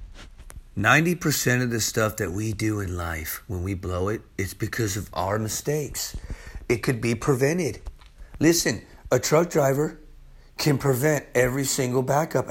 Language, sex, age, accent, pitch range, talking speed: English, male, 40-59, American, 115-160 Hz, 150 wpm